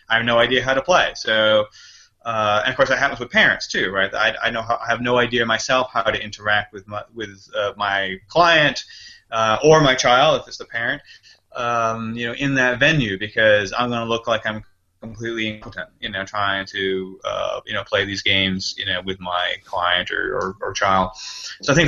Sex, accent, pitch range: male, American, 100-125 Hz